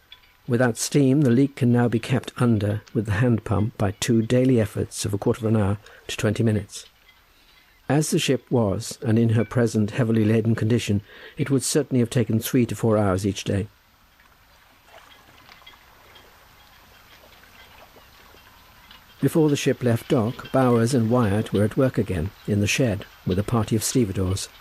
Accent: British